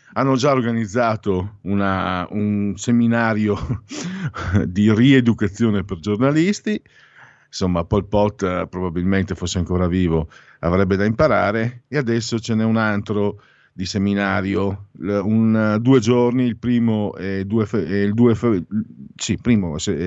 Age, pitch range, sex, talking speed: 50-69, 100-130 Hz, male, 125 wpm